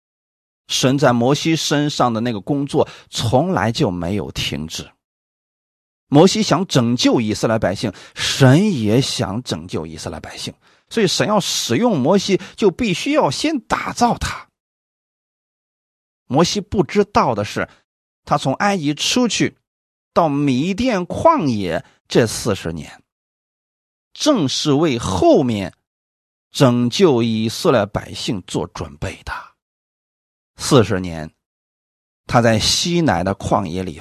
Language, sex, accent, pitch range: Chinese, male, native, 100-160 Hz